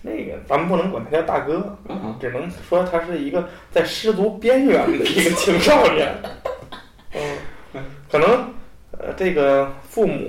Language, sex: Chinese, male